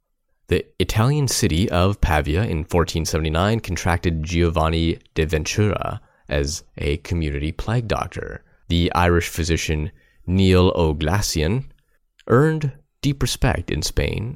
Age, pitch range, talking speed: 30-49, 75-95 Hz, 110 wpm